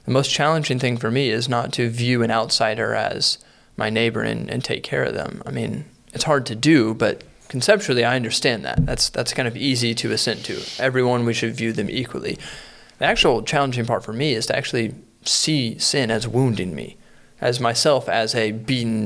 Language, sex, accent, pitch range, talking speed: English, male, American, 115-130 Hz, 205 wpm